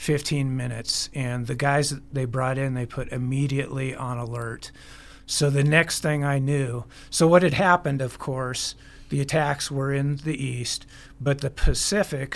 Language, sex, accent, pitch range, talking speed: English, male, American, 125-140 Hz, 170 wpm